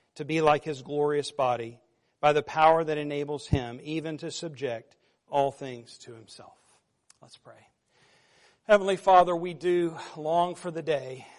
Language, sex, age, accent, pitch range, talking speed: English, male, 40-59, American, 145-175 Hz, 155 wpm